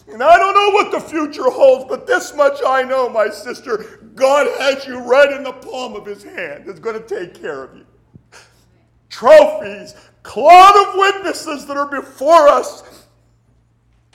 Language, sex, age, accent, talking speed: English, male, 50-69, American, 170 wpm